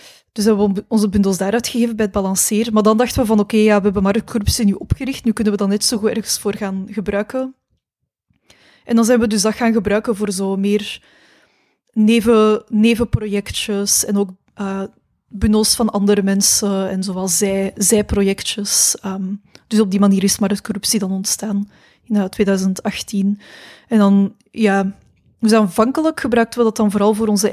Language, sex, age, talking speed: Dutch, female, 20-39, 180 wpm